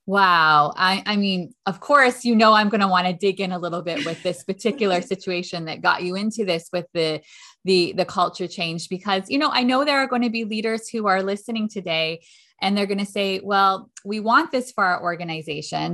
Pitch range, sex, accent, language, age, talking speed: 175-215 Hz, female, American, English, 20-39, 225 wpm